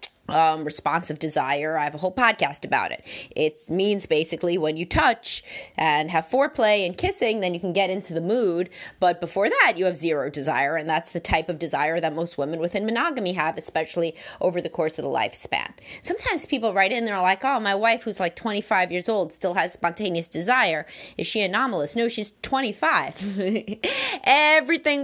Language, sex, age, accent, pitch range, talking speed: English, female, 20-39, American, 175-240 Hz, 190 wpm